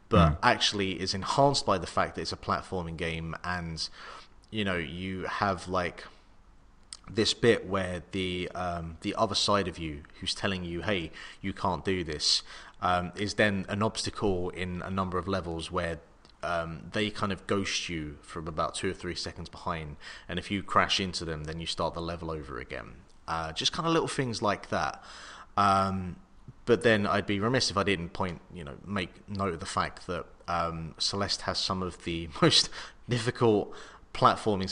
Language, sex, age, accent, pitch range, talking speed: English, male, 30-49, British, 85-100 Hz, 185 wpm